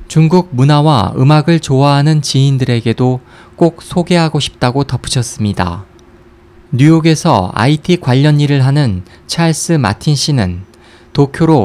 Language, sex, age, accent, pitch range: Korean, male, 20-39, native, 115-155 Hz